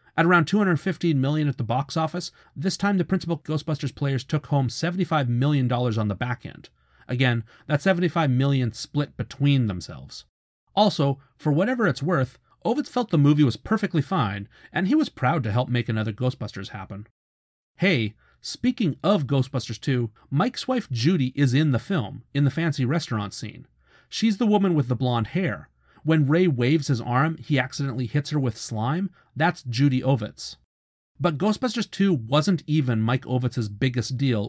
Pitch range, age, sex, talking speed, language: 120-160 Hz, 30-49, male, 170 wpm, English